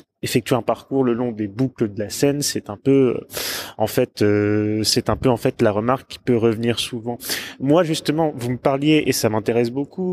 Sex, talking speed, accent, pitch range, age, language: male, 220 wpm, French, 115-140 Hz, 20-39, French